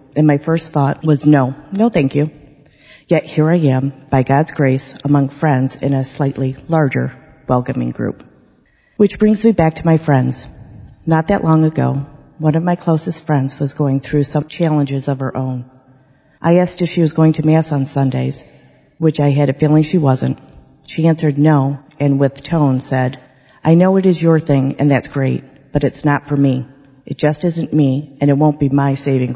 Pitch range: 135-155 Hz